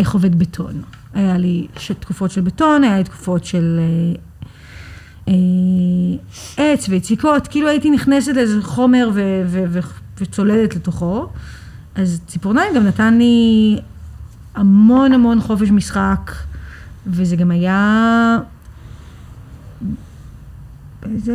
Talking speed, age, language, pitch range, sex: 110 wpm, 30-49, Hebrew, 165-215 Hz, female